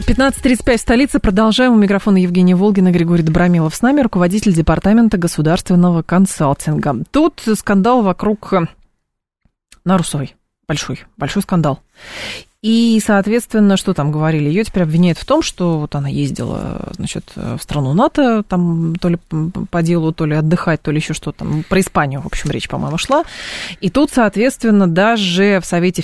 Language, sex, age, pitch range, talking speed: Russian, female, 20-39, 160-200 Hz, 145 wpm